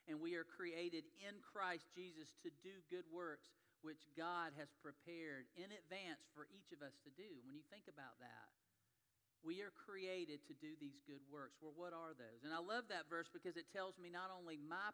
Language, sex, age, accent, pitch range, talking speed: English, male, 40-59, American, 150-185 Hz, 210 wpm